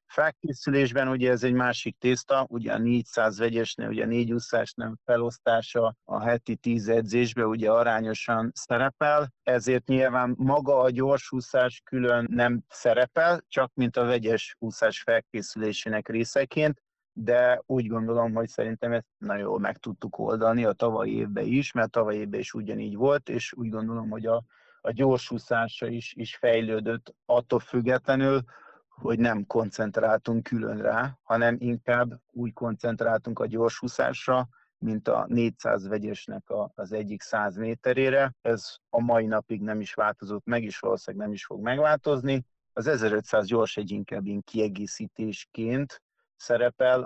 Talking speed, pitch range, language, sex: 140 wpm, 110-125 Hz, Hungarian, male